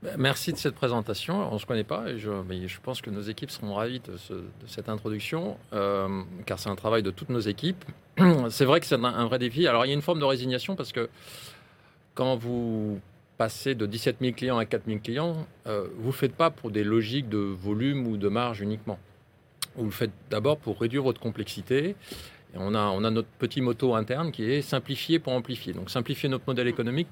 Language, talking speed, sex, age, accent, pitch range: French, 225 wpm, male, 40-59, French, 105-135 Hz